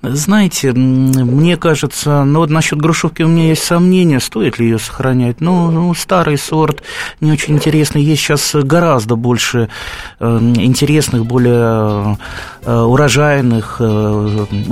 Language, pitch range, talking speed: Russian, 110-140 Hz, 135 wpm